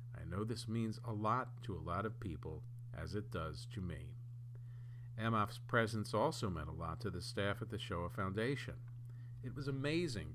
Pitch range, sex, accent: 105-125 Hz, male, American